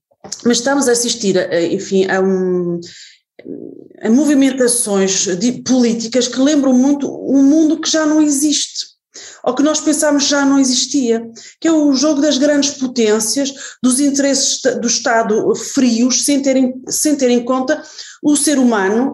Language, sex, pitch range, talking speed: Portuguese, female, 225-295 Hz, 155 wpm